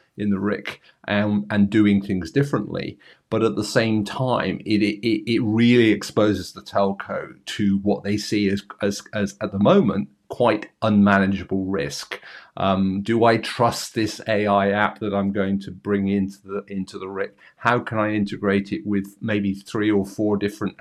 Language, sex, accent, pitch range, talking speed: English, male, British, 100-110 Hz, 175 wpm